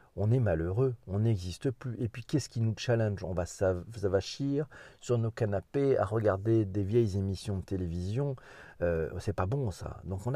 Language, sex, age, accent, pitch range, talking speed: French, male, 40-59, French, 95-130 Hz, 190 wpm